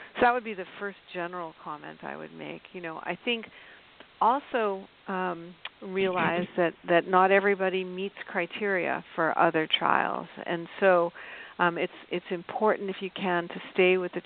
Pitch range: 170-195 Hz